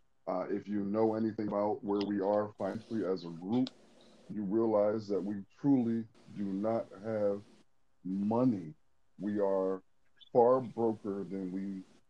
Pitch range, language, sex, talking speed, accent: 105-135 Hz, English, male, 140 wpm, American